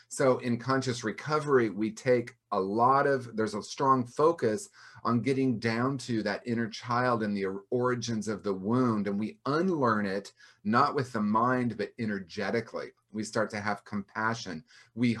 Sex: male